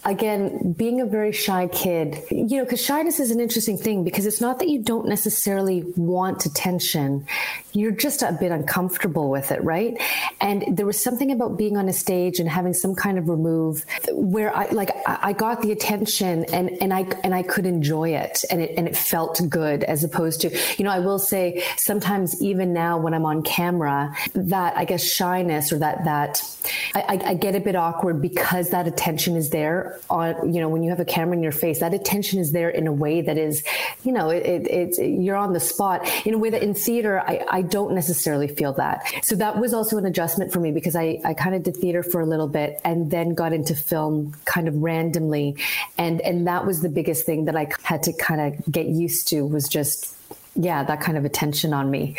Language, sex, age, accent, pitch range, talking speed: English, female, 30-49, American, 160-200 Hz, 220 wpm